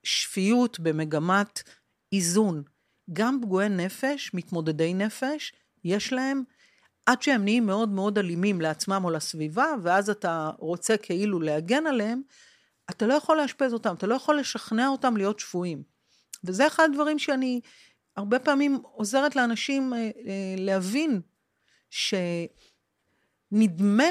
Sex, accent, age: female, native, 40-59